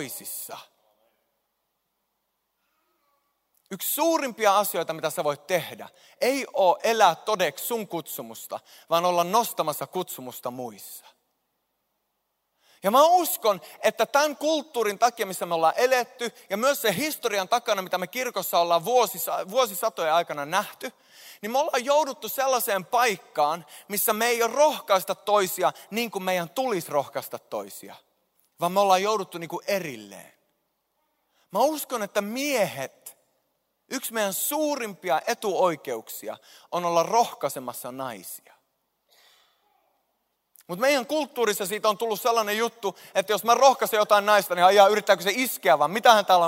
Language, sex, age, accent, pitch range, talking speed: Finnish, male, 30-49, native, 185-250 Hz, 130 wpm